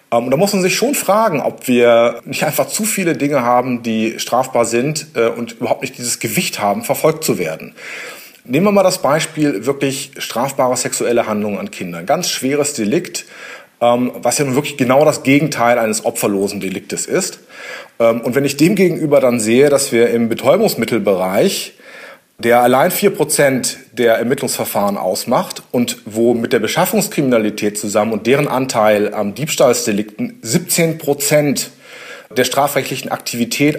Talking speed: 145 wpm